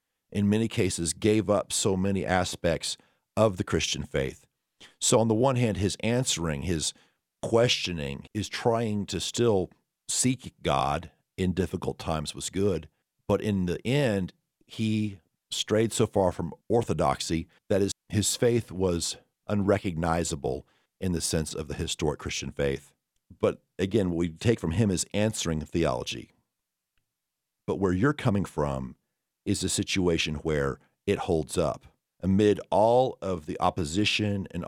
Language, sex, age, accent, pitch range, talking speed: English, male, 50-69, American, 80-105 Hz, 145 wpm